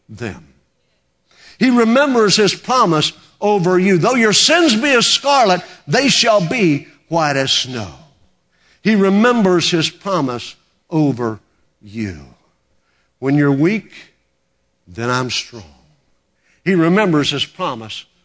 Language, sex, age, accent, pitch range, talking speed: English, male, 50-69, American, 115-175 Hz, 115 wpm